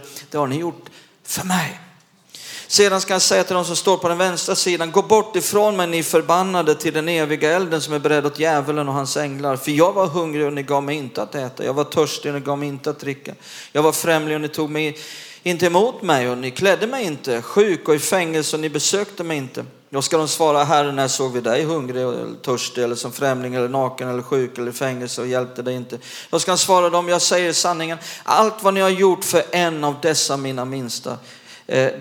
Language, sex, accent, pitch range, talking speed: Swedish, male, native, 135-175 Hz, 240 wpm